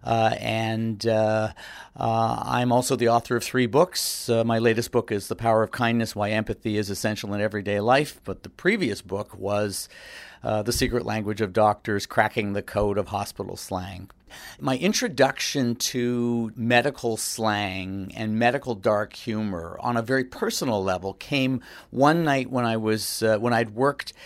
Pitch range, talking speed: 110-130 Hz, 170 wpm